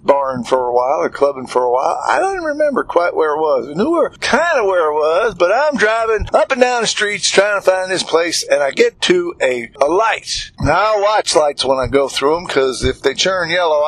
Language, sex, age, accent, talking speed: English, male, 50-69, American, 255 wpm